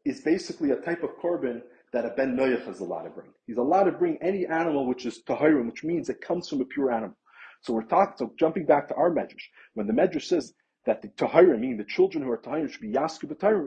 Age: 30-49